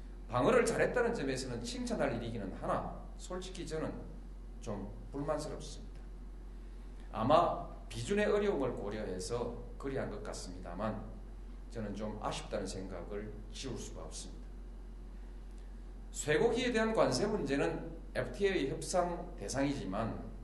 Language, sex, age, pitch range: Korean, male, 40-59, 110-180 Hz